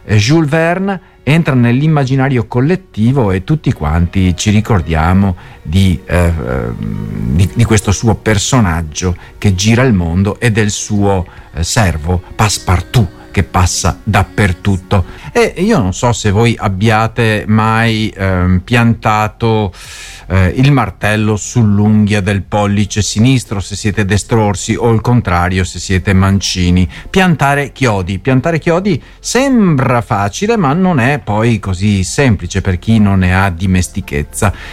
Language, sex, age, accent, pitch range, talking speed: Italian, male, 50-69, native, 95-140 Hz, 125 wpm